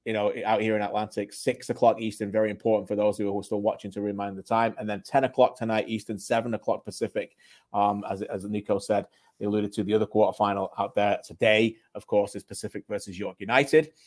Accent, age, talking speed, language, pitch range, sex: British, 30-49, 215 wpm, English, 105-120 Hz, male